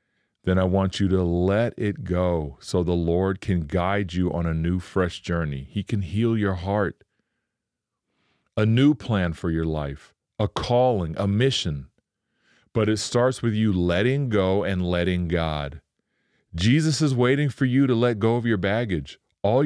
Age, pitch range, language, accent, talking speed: 40-59, 85-110 Hz, English, American, 170 wpm